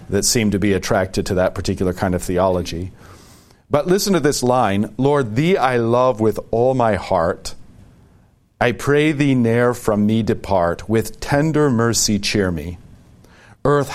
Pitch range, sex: 100-135 Hz, male